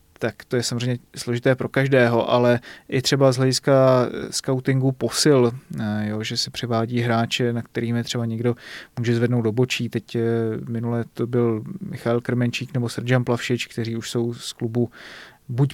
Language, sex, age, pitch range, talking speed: Czech, male, 30-49, 120-140 Hz, 165 wpm